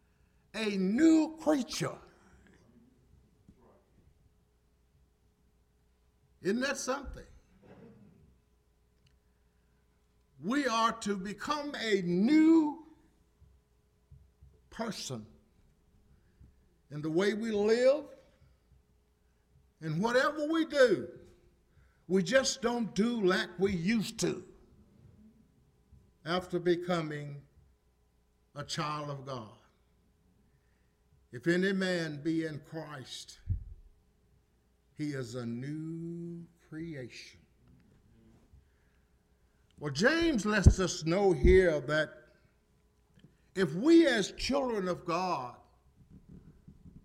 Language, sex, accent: English, male, American